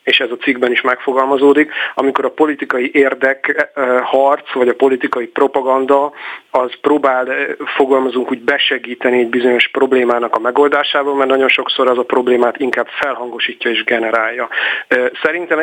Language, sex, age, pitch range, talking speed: Hungarian, male, 40-59, 125-140 Hz, 135 wpm